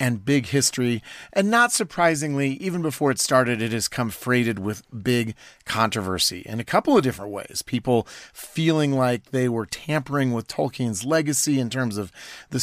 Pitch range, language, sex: 115-140 Hz, English, male